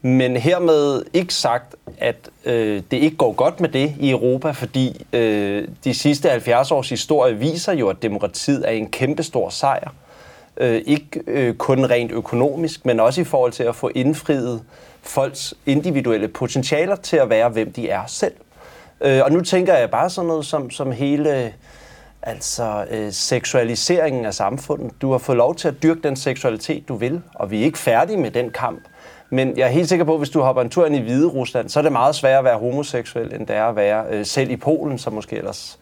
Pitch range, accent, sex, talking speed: 120-155 Hz, native, male, 210 wpm